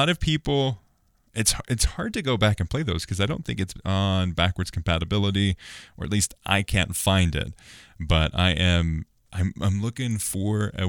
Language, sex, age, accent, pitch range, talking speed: English, male, 20-39, American, 85-105 Hz, 185 wpm